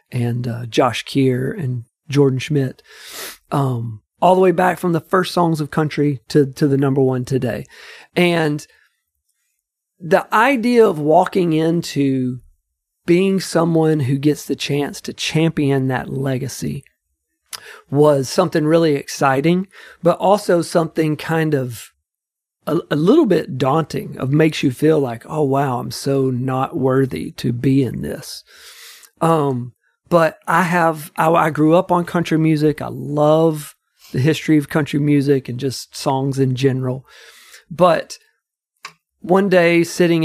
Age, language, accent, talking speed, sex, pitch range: 40-59, English, American, 145 wpm, male, 130-160 Hz